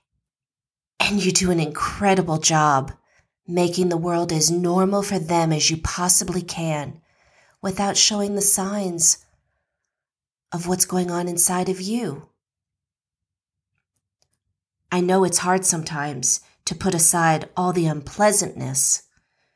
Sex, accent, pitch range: female, American, 165-200 Hz